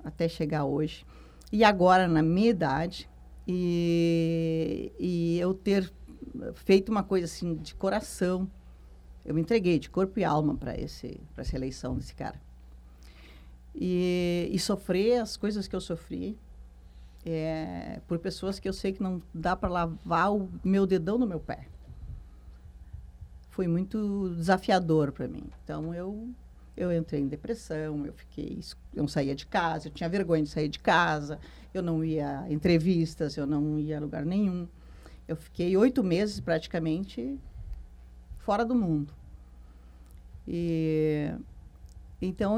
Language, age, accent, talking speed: Portuguese, 50-69, Brazilian, 145 wpm